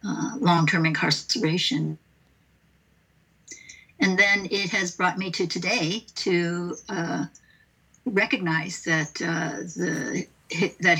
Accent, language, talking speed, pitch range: American, English, 100 wpm, 165-195 Hz